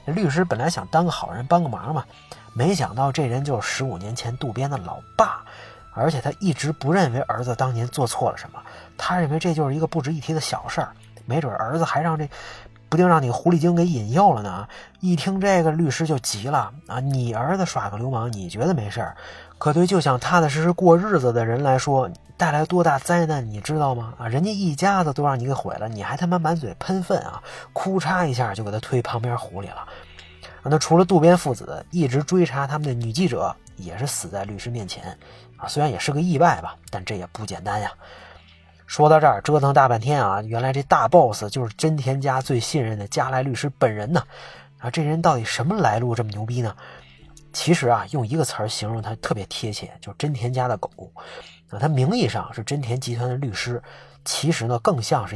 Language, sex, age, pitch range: Chinese, male, 30-49, 115-160 Hz